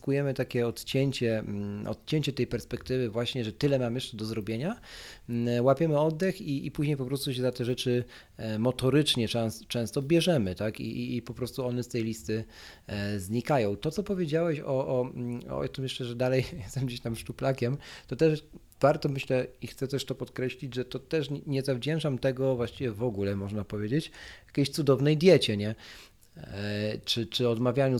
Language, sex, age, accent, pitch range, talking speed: Polish, male, 40-59, native, 115-135 Hz, 170 wpm